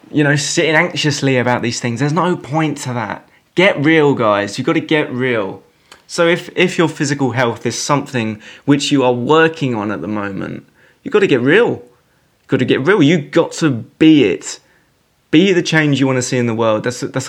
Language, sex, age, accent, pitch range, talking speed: English, male, 20-39, British, 120-160 Hz, 220 wpm